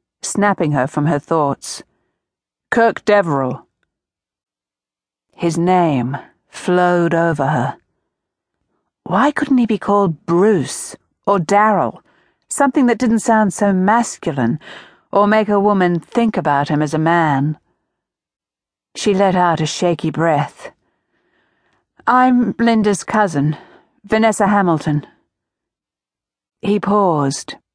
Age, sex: 50-69, female